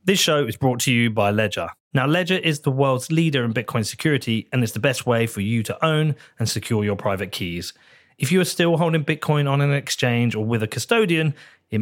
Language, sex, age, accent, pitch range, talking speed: English, male, 30-49, British, 110-155 Hz, 230 wpm